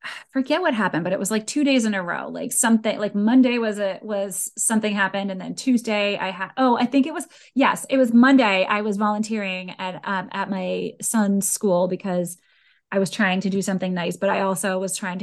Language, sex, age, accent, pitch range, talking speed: English, female, 20-39, American, 185-225 Hz, 225 wpm